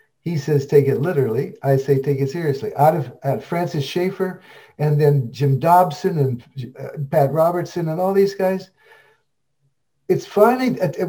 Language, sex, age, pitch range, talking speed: English, male, 60-79, 140-190 Hz, 170 wpm